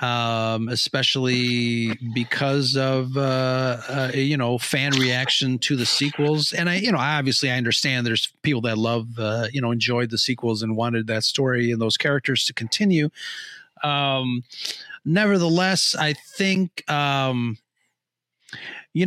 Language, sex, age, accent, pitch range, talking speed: English, male, 40-59, American, 125-150 Hz, 140 wpm